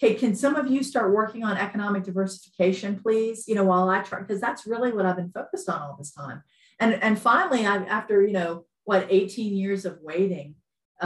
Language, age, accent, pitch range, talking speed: English, 50-69, American, 145-190 Hz, 210 wpm